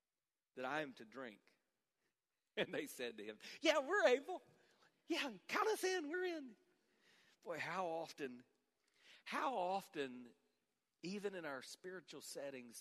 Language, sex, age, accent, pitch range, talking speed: English, male, 40-59, American, 135-195 Hz, 135 wpm